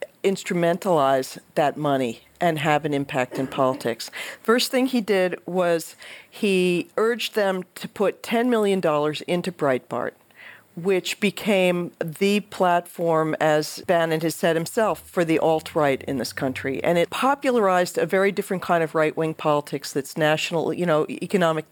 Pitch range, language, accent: 160-210 Hz, English, American